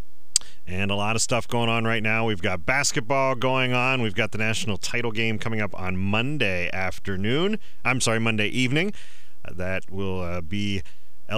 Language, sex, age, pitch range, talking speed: English, male, 40-59, 90-120 Hz, 180 wpm